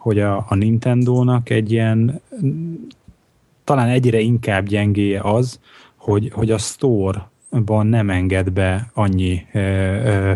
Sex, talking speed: male, 120 wpm